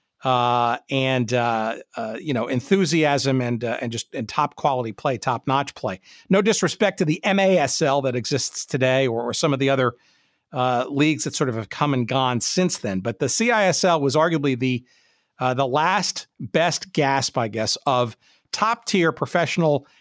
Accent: American